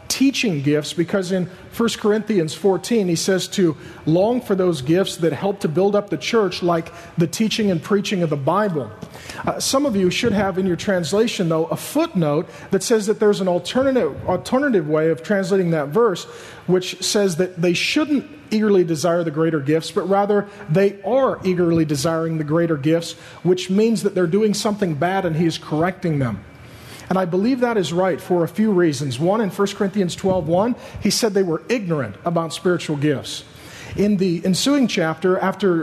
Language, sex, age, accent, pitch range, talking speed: English, male, 40-59, American, 170-205 Hz, 185 wpm